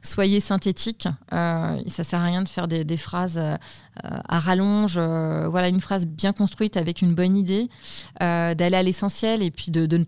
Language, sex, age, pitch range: French, female, 20-39, 160-195 Hz